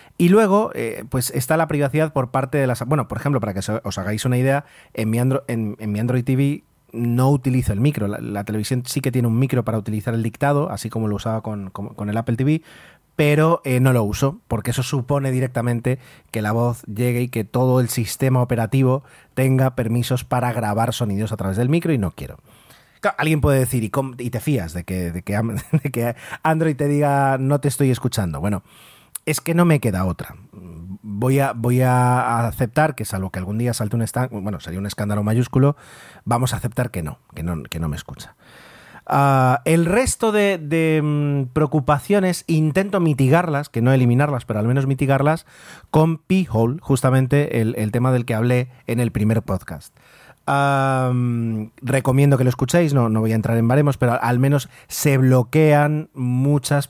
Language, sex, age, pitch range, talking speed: Spanish, male, 30-49, 115-145 Hz, 190 wpm